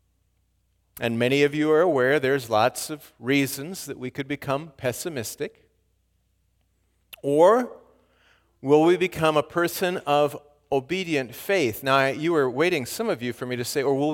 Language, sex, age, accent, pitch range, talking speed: English, male, 50-69, American, 95-145 Hz, 155 wpm